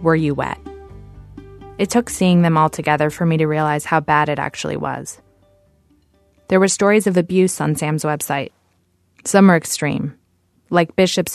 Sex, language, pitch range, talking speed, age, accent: female, English, 140-170 Hz, 165 wpm, 20-39, American